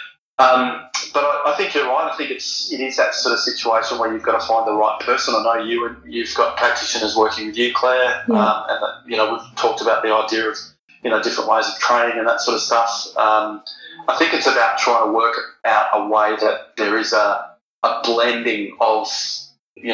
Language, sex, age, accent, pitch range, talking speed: English, male, 20-39, Australian, 110-125 Hz, 230 wpm